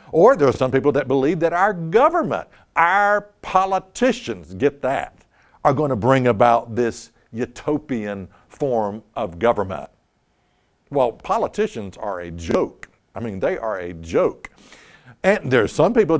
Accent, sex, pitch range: American, male, 115-195 Hz